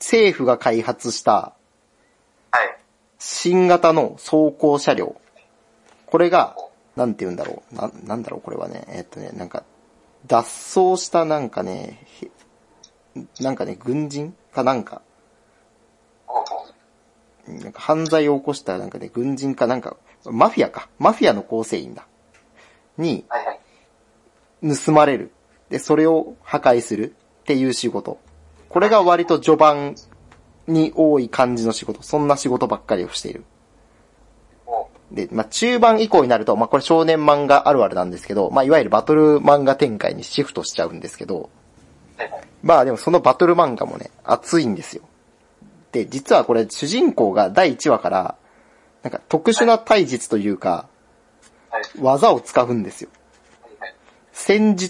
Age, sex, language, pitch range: 40-59, male, Japanese, 115-165 Hz